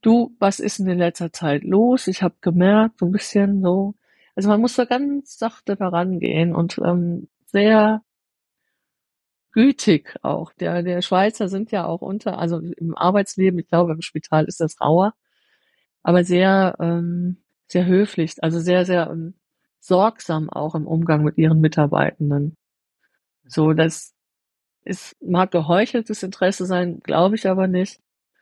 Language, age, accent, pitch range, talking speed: German, 50-69, German, 170-210 Hz, 150 wpm